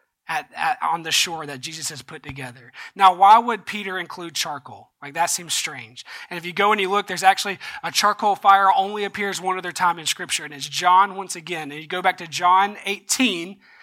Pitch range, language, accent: 155-195 Hz, English, American